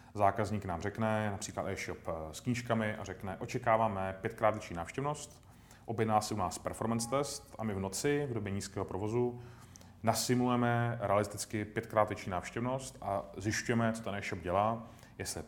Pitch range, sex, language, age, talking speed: 95-110 Hz, male, Slovak, 30-49, 155 wpm